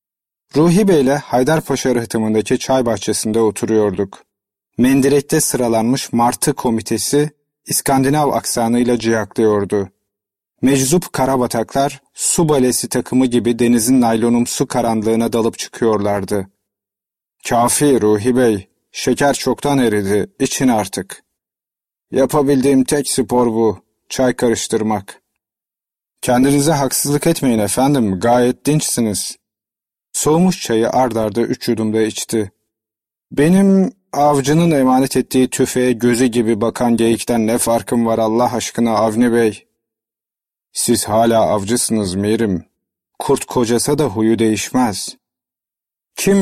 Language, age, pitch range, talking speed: Turkish, 40-59, 110-135 Hz, 100 wpm